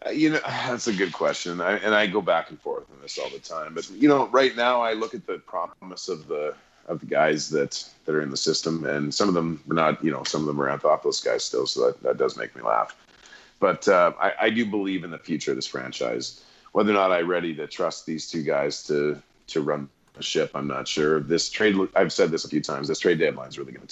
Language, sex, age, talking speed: English, male, 30-49, 265 wpm